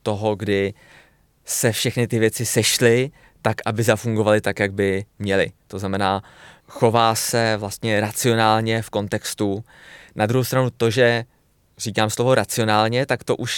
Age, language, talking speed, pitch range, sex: 20-39, Czech, 145 wpm, 105-120 Hz, male